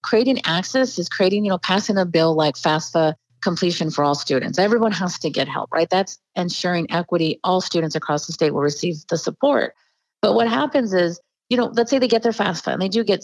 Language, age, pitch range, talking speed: English, 40-59, 170-210 Hz, 220 wpm